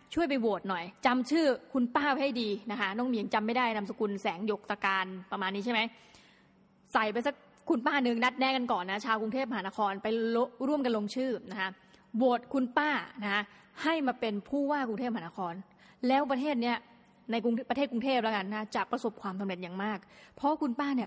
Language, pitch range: Thai, 210-260 Hz